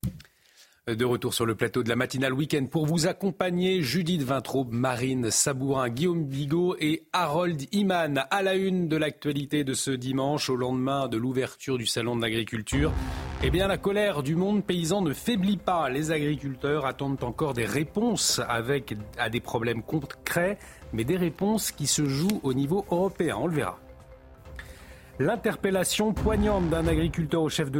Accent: French